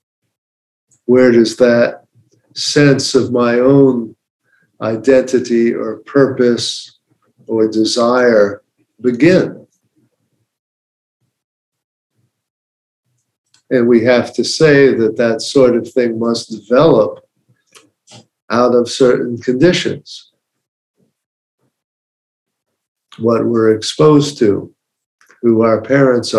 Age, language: 50-69, English